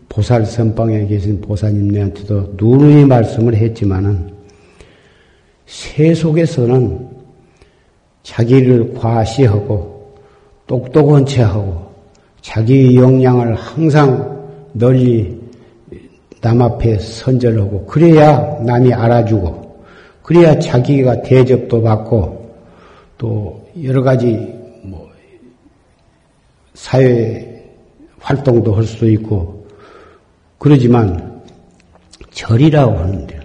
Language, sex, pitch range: Korean, male, 110-140 Hz